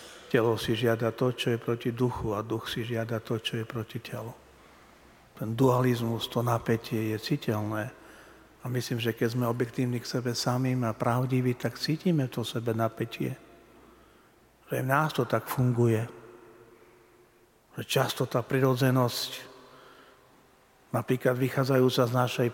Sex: male